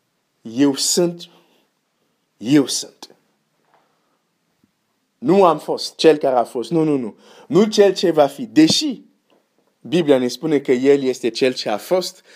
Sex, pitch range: male, 125-170 Hz